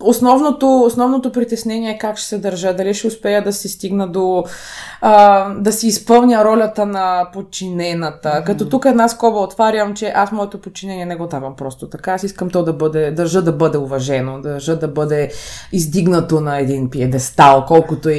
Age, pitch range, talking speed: 20-39, 175-230 Hz, 180 wpm